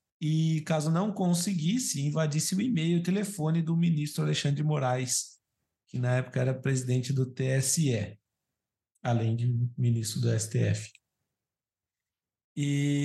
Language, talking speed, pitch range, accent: Portuguese, 130 wpm, 125-165 Hz, Brazilian